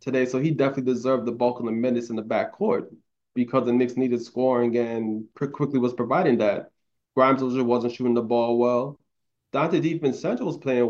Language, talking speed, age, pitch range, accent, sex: English, 185 wpm, 20-39, 120-130 Hz, American, male